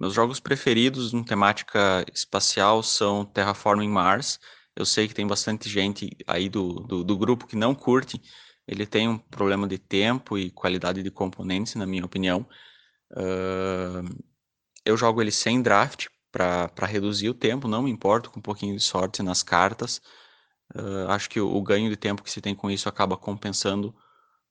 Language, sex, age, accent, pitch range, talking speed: Portuguese, male, 20-39, Brazilian, 100-115 Hz, 170 wpm